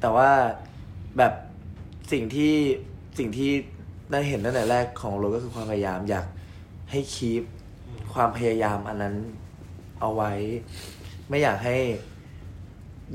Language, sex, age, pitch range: Thai, male, 20-39, 95-120 Hz